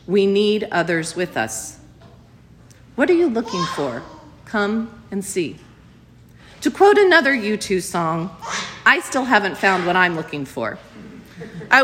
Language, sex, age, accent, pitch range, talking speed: English, female, 40-59, American, 195-280 Hz, 135 wpm